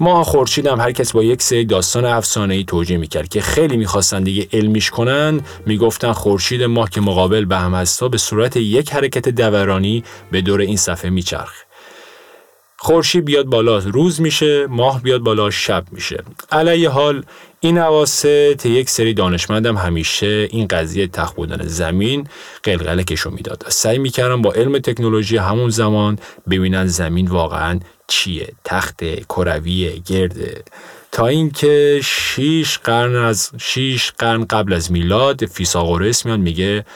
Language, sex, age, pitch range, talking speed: Persian, male, 30-49, 95-130 Hz, 140 wpm